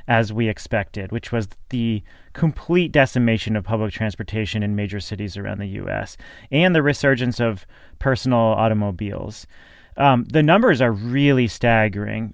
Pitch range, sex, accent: 115-140 Hz, male, American